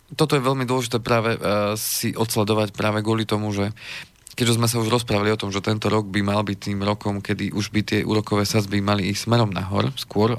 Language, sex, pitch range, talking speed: Slovak, male, 105-120 Hz, 220 wpm